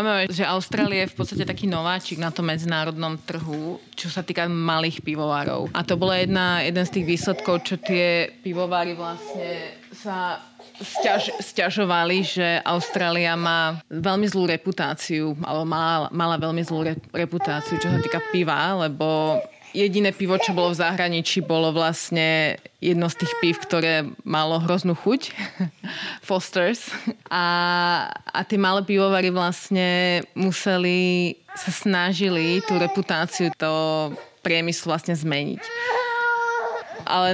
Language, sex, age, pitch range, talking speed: Slovak, female, 20-39, 160-185 Hz, 130 wpm